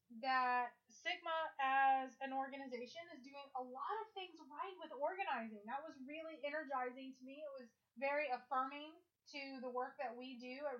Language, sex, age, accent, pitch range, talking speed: English, female, 20-39, American, 240-290 Hz, 170 wpm